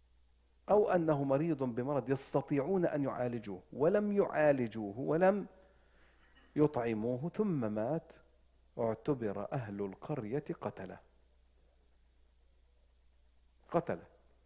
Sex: male